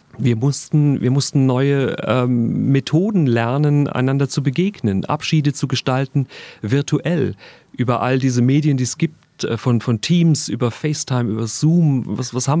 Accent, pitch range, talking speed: German, 115-145 Hz, 150 wpm